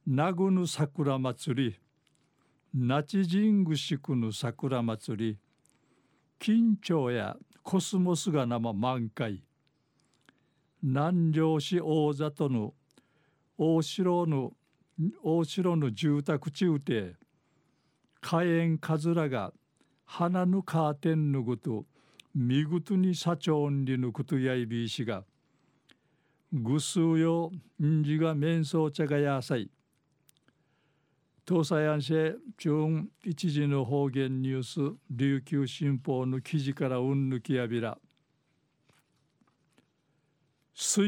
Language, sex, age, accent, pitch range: Japanese, male, 50-69, native, 135-165 Hz